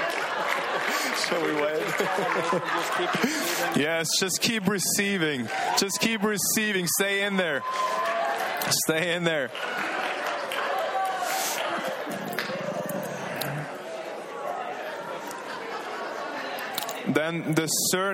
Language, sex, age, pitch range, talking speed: English, male, 20-39, 165-195 Hz, 65 wpm